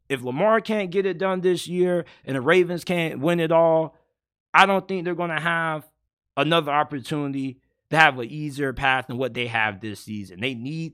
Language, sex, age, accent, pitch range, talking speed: English, male, 30-49, American, 165-210 Hz, 205 wpm